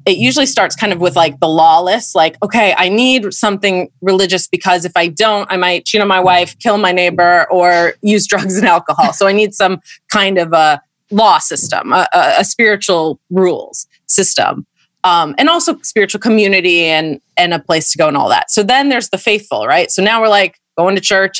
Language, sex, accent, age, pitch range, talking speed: English, female, American, 20-39, 165-210 Hz, 215 wpm